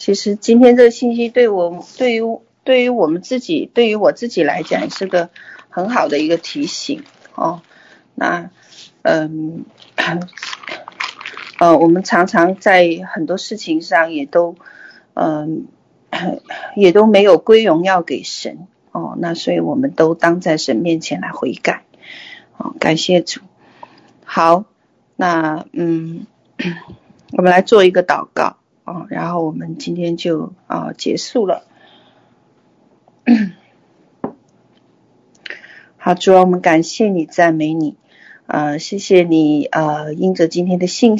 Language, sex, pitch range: Chinese, female, 160-220 Hz